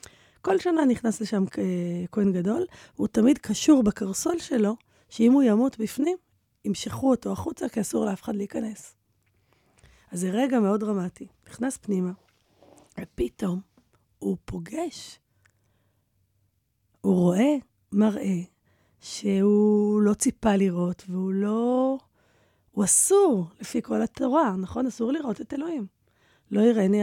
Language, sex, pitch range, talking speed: English, female, 180-255 Hz, 115 wpm